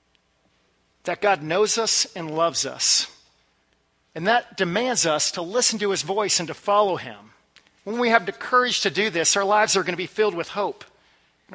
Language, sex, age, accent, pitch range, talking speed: English, male, 40-59, American, 155-210 Hz, 195 wpm